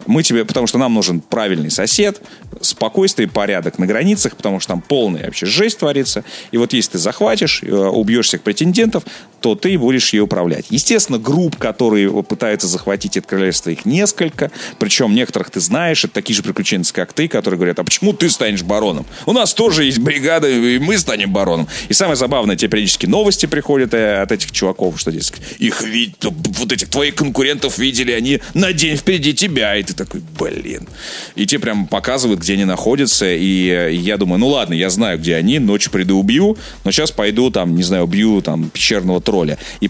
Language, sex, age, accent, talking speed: Russian, male, 30-49, native, 190 wpm